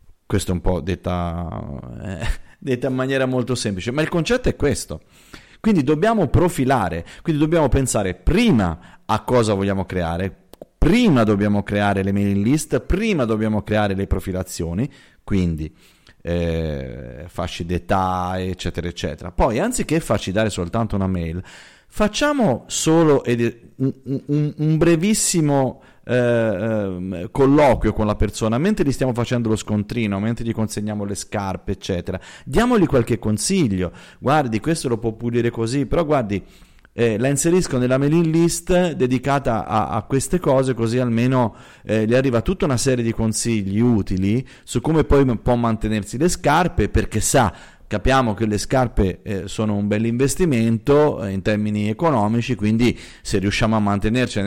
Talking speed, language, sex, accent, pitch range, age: 145 wpm, Italian, male, native, 100-135 Hz, 30-49